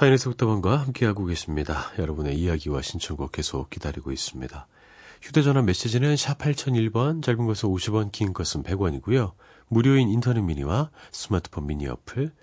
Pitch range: 85-130 Hz